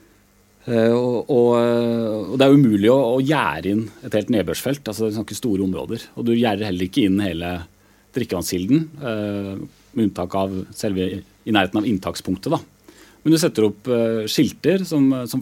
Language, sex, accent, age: English, male, Norwegian, 30-49